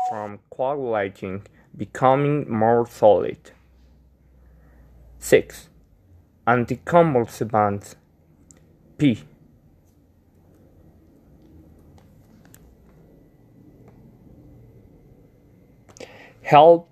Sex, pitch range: male, 105-135 Hz